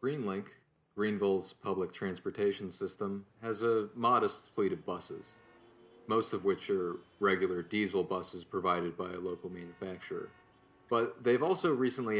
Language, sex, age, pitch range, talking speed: English, male, 30-49, 90-105 Hz, 135 wpm